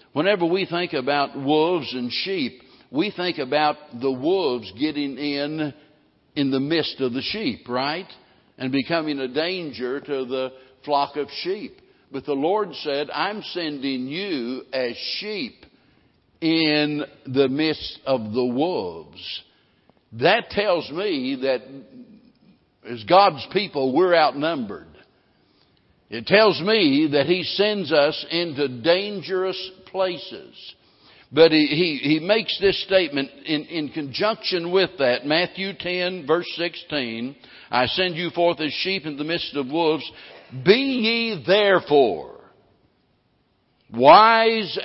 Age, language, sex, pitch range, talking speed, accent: 60-79, English, male, 130-180 Hz, 125 wpm, American